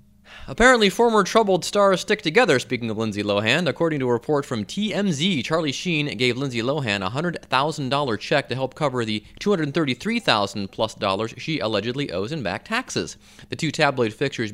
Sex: male